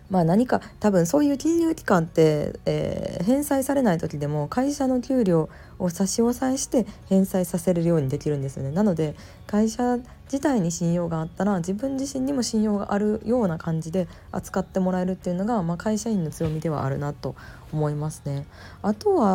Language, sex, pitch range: Japanese, female, 150-215 Hz